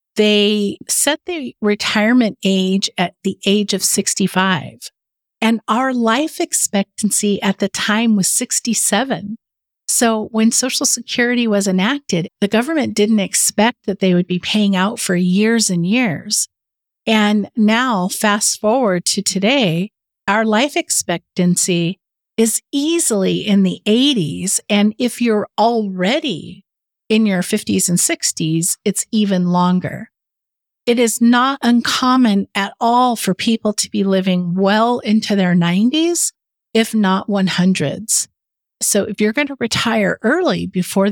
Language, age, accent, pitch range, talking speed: English, 50-69, American, 190-235 Hz, 135 wpm